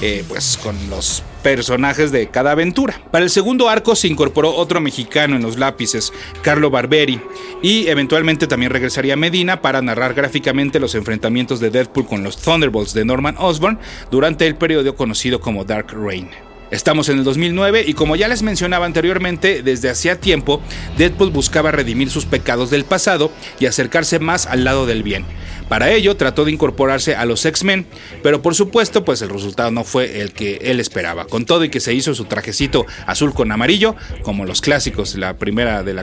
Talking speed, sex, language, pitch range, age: 185 wpm, male, Spanish, 115-175 Hz, 40-59